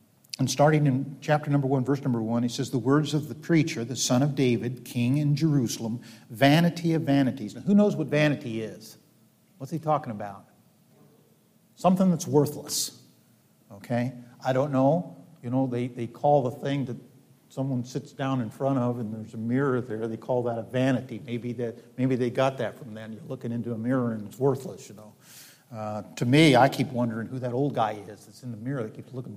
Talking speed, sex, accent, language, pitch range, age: 210 wpm, male, American, English, 120-160 Hz, 50-69